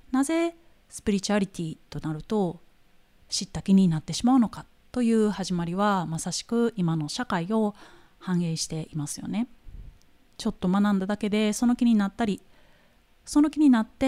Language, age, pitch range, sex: Japanese, 30-49, 165-230 Hz, female